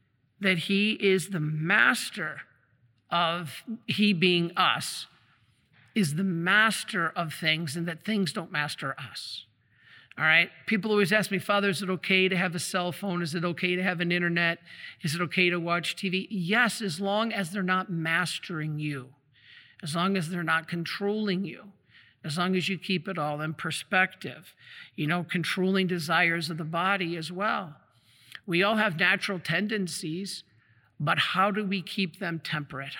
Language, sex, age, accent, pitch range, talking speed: English, male, 50-69, American, 165-195 Hz, 170 wpm